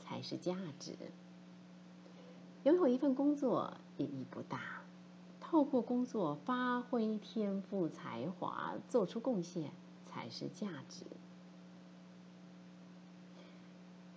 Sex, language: female, Chinese